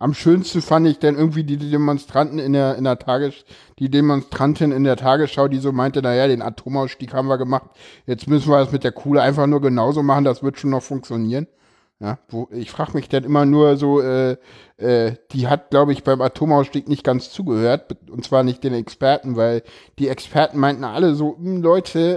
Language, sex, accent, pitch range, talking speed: German, male, German, 135-170 Hz, 205 wpm